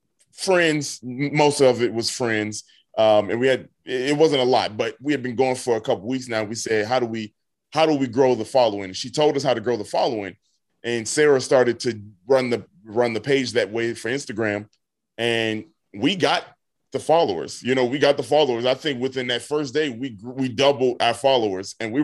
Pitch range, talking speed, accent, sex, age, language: 120-150 Hz, 220 wpm, American, male, 20-39, English